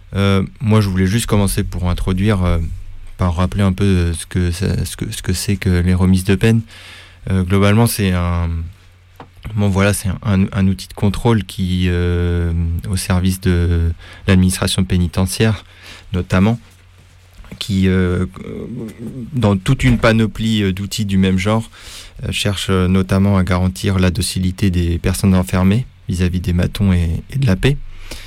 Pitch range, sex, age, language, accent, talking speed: 90-100 Hz, male, 20-39, French, French, 140 wpm